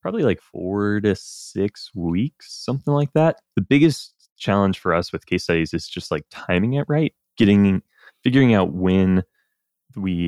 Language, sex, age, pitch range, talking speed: English, male, 20-39, 85-120 Hz, 165 wpm